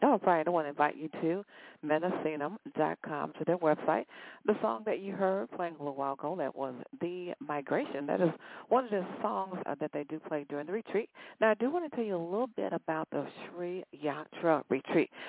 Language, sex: English, female